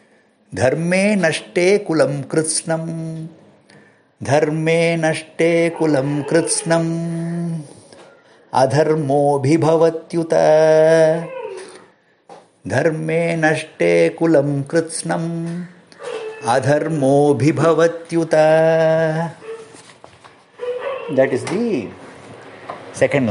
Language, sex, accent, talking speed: English, male, Indian, 50 wpm